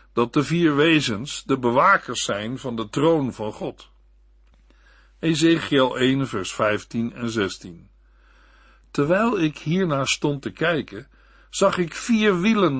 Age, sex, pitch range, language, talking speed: 60-79, male, 115-165 Hz, Dutch, 130 wpm